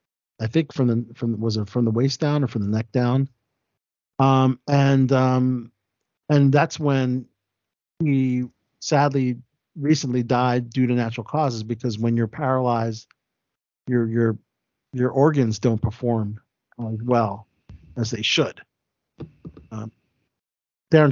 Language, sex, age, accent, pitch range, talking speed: English, male, 40-59, American, 110-130 Hz, 135 wpm